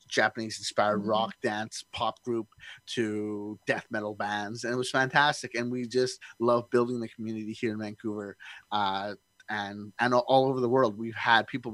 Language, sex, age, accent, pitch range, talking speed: English, male, 30-49, American, 105-120 Hz, 175 wpm